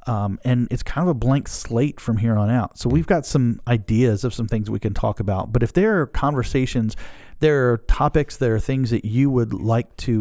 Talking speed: 235 wpm